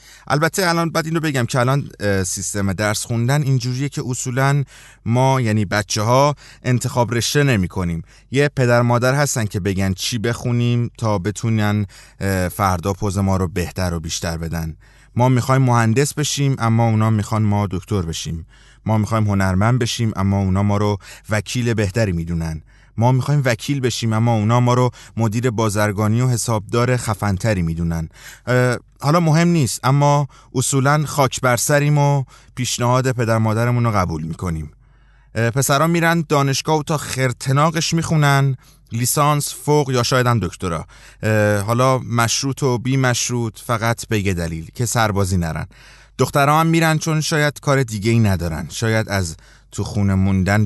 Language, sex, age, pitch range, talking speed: English, male, 30-49, 100-135 Hz, 150 wpm